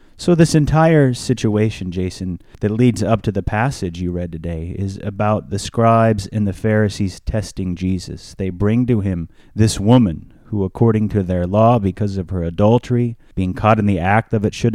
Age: 30-49